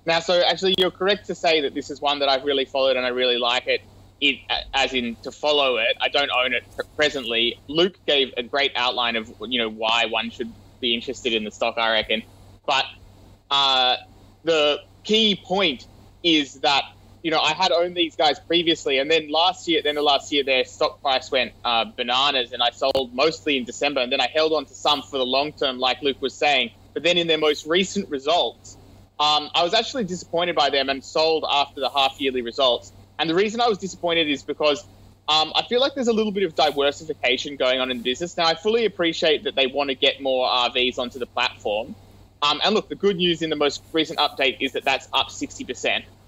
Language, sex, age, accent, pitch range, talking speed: English, male, 20-39, Australian, 120-165 Hz, 225 wpm